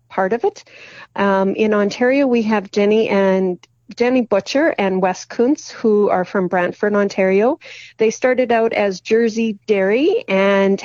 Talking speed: 150 wpm